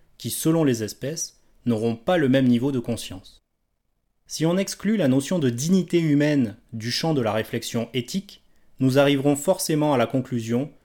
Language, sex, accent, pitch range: French, male, French, 110-150 Hz